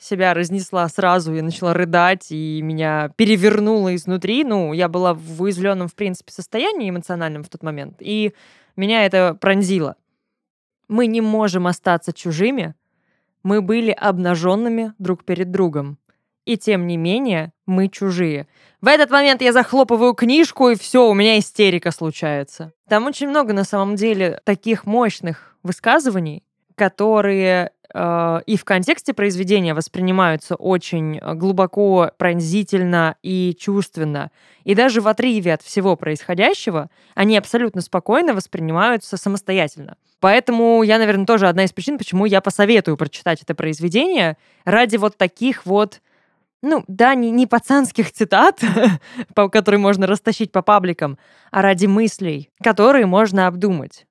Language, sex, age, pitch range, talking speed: Russian, female, 20-39, 175-220 Hz, 135 wpm